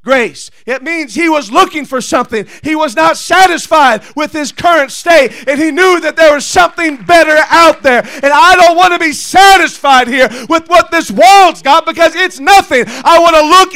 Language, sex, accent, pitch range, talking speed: English, male, American, 245-325 Hz, 200 wpm